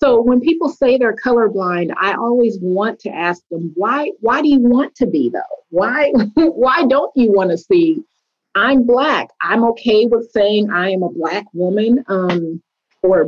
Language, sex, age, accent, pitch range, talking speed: English, female, 40-59, American, 180-245 Hz, 180 wpm